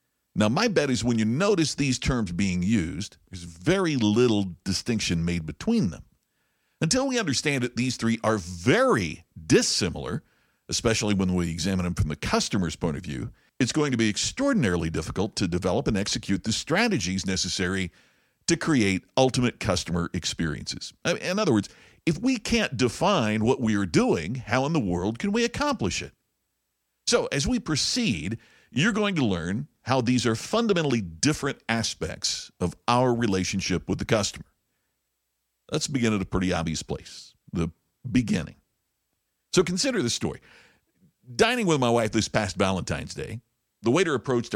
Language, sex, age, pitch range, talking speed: English, male, 50-69, 95-130 Hz, 160 wpm